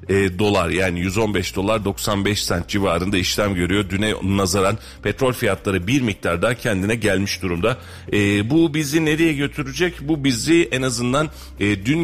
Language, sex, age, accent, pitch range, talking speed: Turkish, male, 40-59, native, 95-125 Hz, 140 wpm